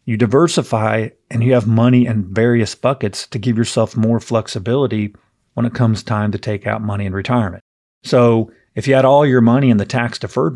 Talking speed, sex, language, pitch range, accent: 195 wpm, male, English, 110-125 Hz, American